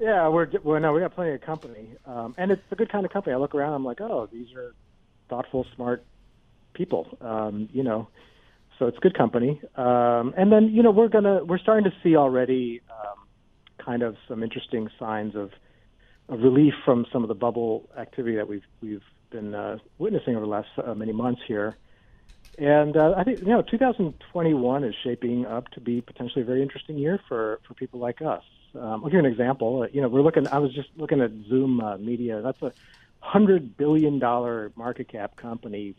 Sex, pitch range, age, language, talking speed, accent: male, 115-150 Hz, 40-59, English, 205 wpm, American